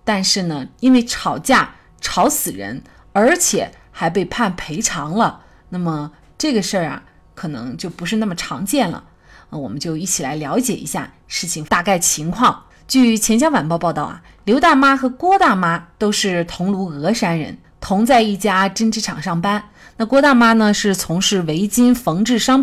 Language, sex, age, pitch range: Chinese, female, 30-49, 180-270 Hz